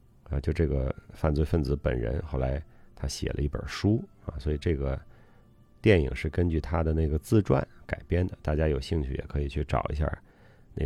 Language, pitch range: Chinese, 75-105 Hz